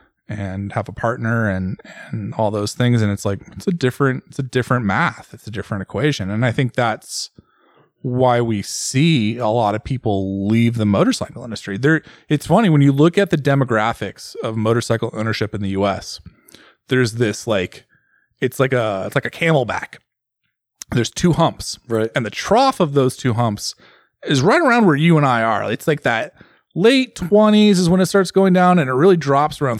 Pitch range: 115-175 Hz